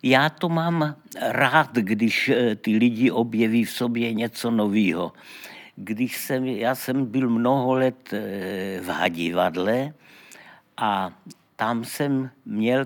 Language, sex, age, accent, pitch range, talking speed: Czech, male, 60-79, native, 105-135 Hz, 105 wpm